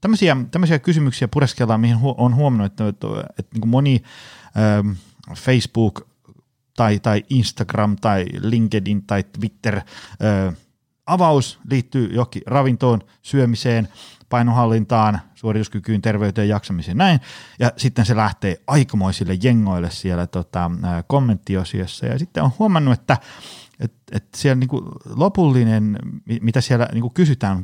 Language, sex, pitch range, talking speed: Finnish, male, 95-125 Hz, 130 wpm